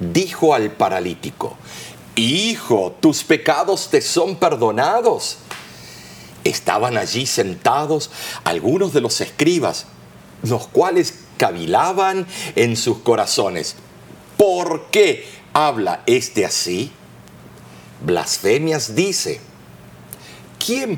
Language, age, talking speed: Spanish, 50-69, 85 wpm